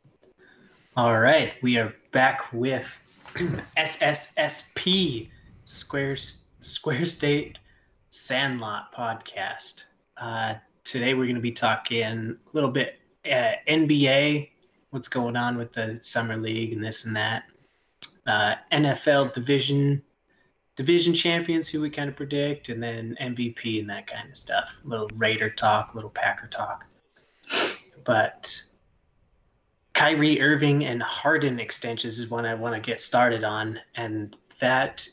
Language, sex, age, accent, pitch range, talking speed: English, male, 20-39, American, 115-145 Hz, 130 wpm